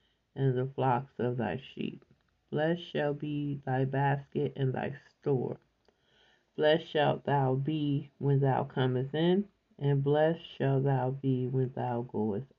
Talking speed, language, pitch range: 145 wpm, English, 135-155 Hz